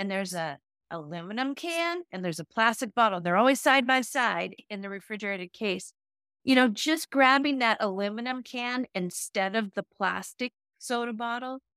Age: 30-49